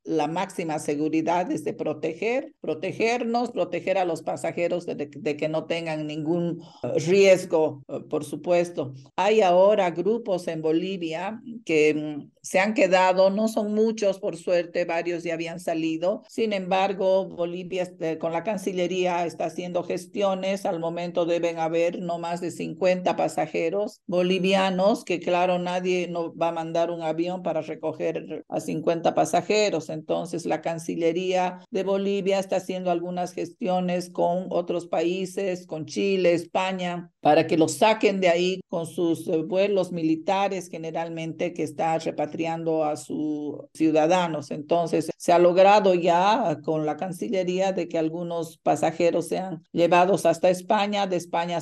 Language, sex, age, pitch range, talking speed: Spanish, female, 50-69, 160-185 Hz, 140 wpm